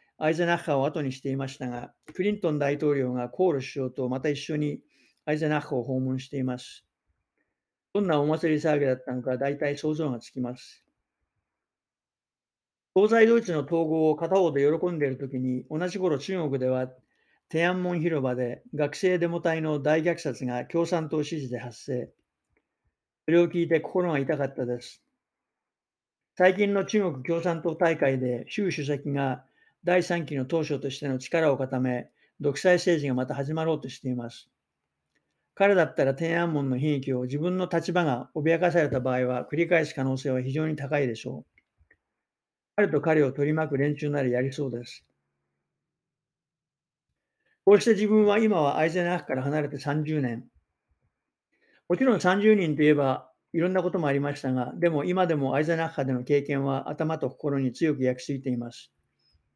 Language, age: English, 50-69